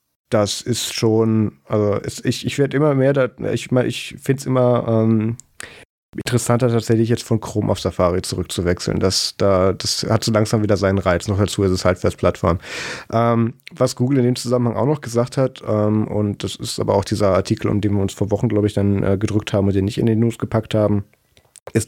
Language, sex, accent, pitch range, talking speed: German, male, German, 105-120 Hz, 210 wpm